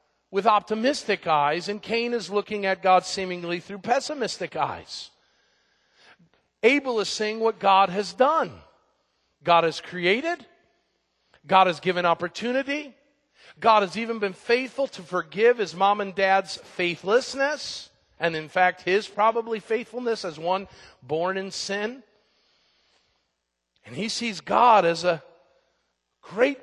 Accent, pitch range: American, 175-245 Hz